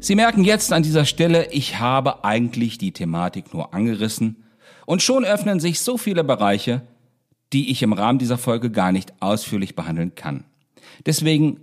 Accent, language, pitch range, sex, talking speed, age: German, German, 110-155 Hz, male, 165 wpm, 50-69